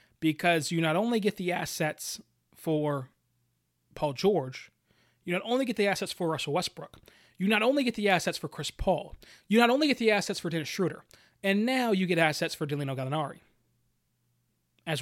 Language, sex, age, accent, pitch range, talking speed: English, male, 20-39, American, 145-200 Hz, 185 wpm